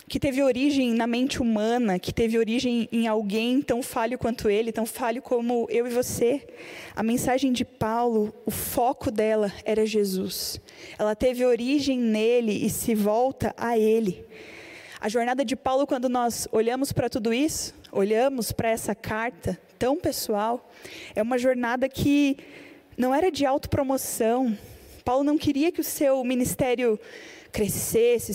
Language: Portuguese